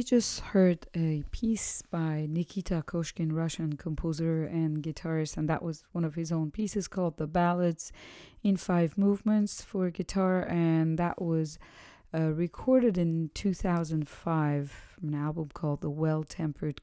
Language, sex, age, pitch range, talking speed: English, female, 40-59, 155-185 Hz, 145 wpm